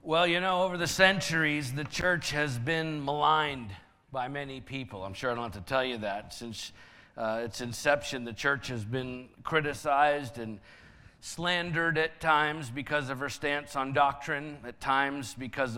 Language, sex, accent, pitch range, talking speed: English, male, American, 120-145 Hz, 170 wpm